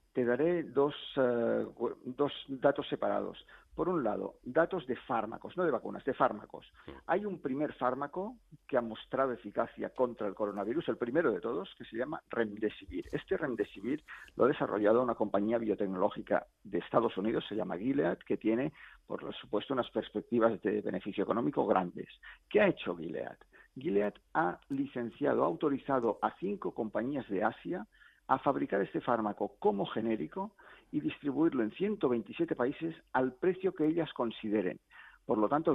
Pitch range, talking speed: 115-165 Hz, 155 wpm